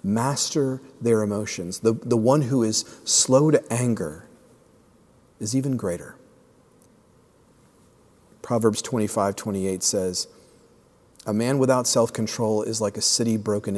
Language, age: English, 40-59